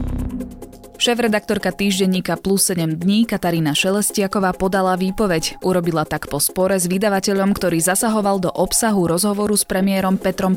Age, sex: 20-39, female